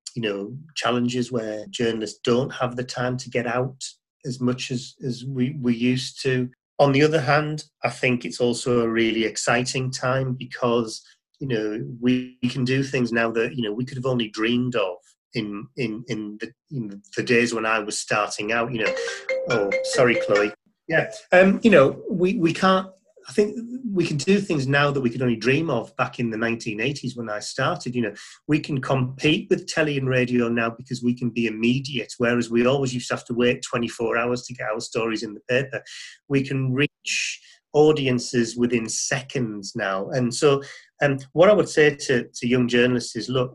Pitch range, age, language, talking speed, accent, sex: 115-135 Hz, 30-49, English, 200 wpm, British, male